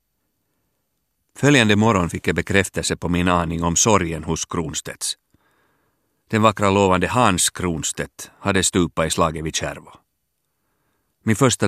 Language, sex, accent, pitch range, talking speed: Swedish, male, Finnish, 80-100 Hz, 130 wpm